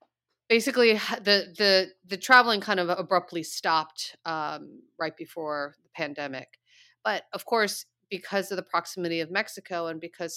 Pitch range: 155-190 Hz